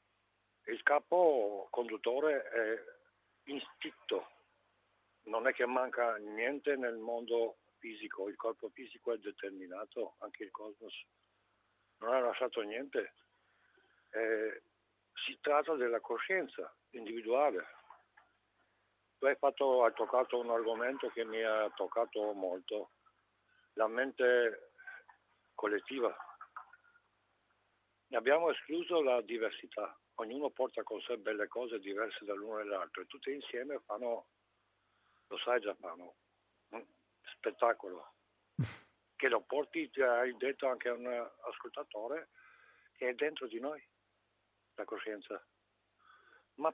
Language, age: Italian, 60-79